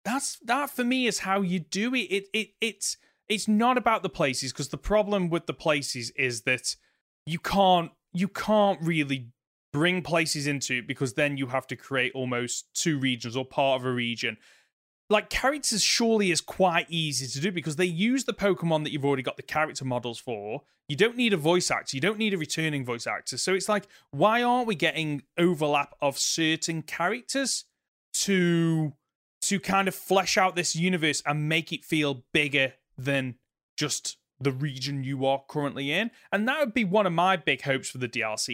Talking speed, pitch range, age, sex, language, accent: 195 wpm, 140-205 Hz, 30-49, male, English, British